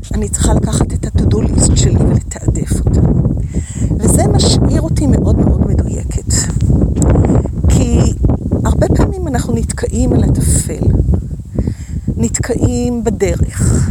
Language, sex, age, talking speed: Hebrew, female, 40-59, 105 wpm